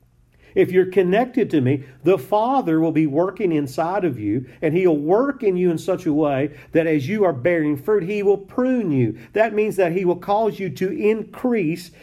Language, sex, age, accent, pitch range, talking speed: English, male, 50-69, American, 145-200 Hz, 205 wpm